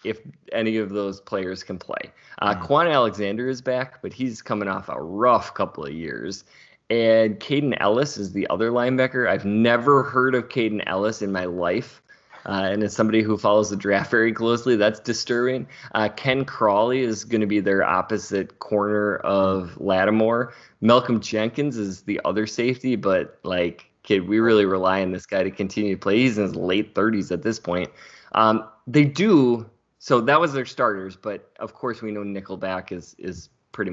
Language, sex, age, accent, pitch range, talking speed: English, male, 20-39, American, 95-120 Hz, 185 wpm